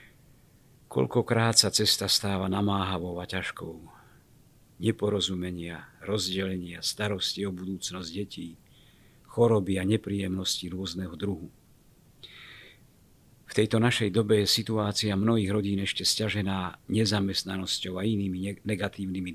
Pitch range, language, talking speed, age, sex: 95-110 Hz, Slovak, 100 wpm, 50-69, male